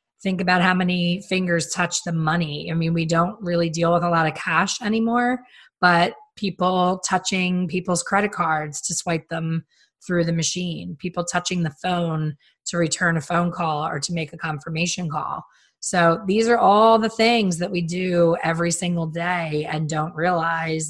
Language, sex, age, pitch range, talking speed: English, female, 20-39, 165-185 Hz, 180 wpm